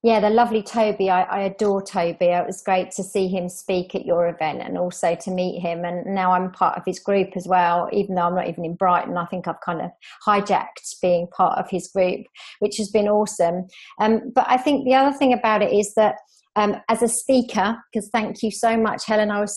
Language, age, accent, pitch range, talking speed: English, 40-59, British, 190-225 Hz, 235 wpm